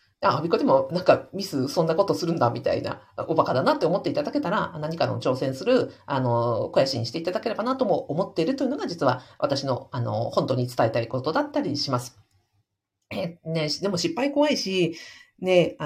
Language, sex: Japanese, female